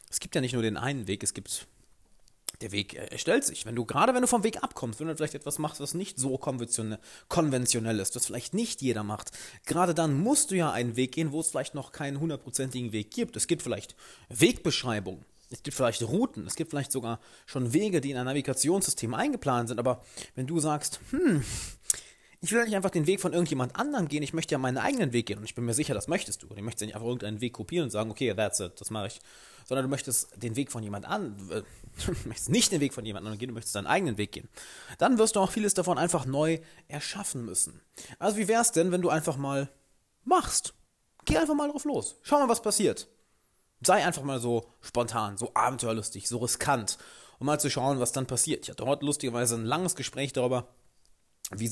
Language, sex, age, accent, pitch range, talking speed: German, male, 30-49, German, 115-160 Hz, 230 wpm